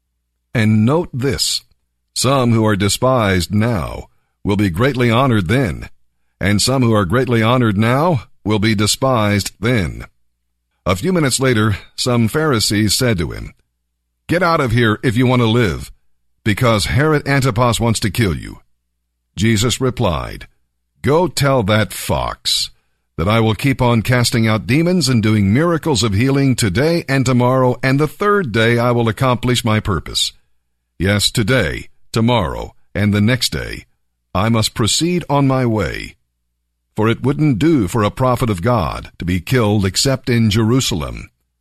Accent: American